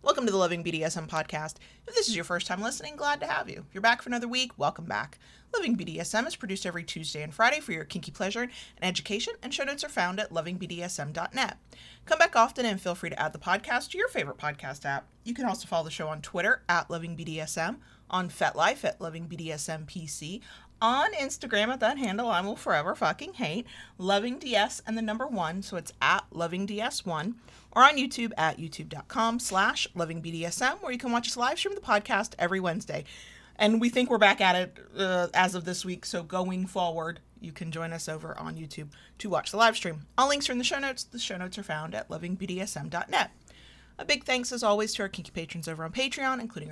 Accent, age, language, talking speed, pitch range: American, 40-59, English, 220 wpm, 170-235 Hz